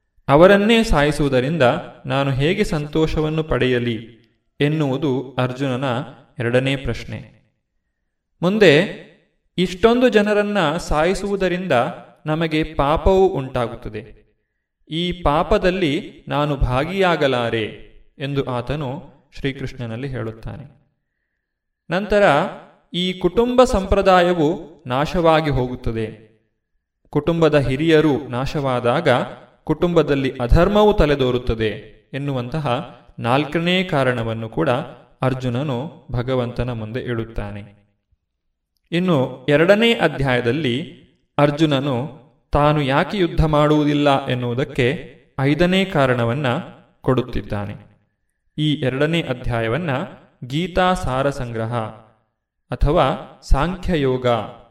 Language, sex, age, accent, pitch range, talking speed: Kannada, male, 30-49, native, 120-160 Hz, 70 wpm